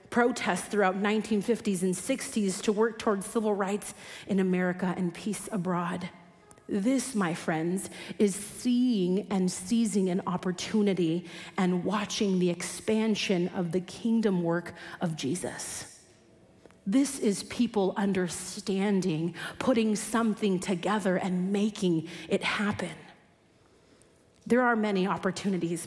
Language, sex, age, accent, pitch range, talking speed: English, female, 30-49, American, 185-235 Hz, 115 wpm